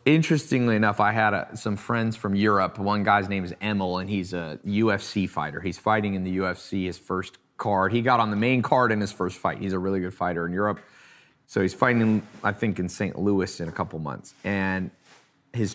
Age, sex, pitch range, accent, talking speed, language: 30-49, male, 95-120 Hz, American, 215 wpm, English